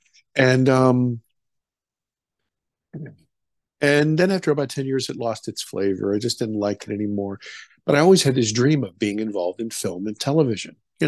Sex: male